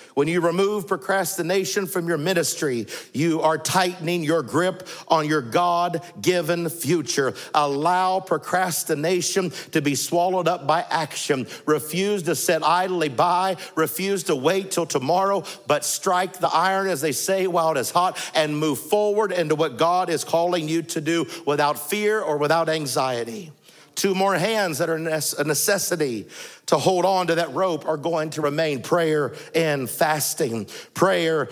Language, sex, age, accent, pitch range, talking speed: English, male, 50-69, American, 155-180 Hz, 155 wpm